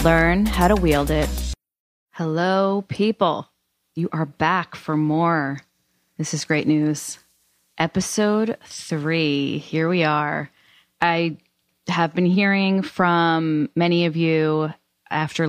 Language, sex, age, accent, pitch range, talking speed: English, female, 20-39, American, 155-185 Hz, 115 wpm